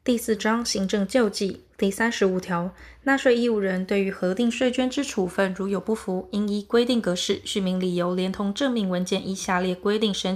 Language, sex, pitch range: Chinese, female, 185-235 Hz